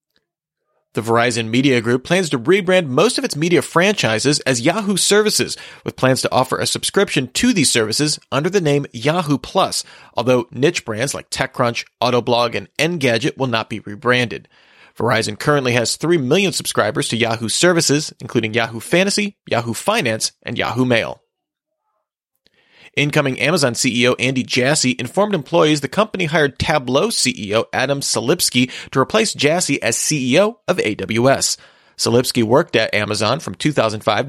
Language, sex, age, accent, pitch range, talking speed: English, male, 30-49, American, 120-170 Hz, 150 wpm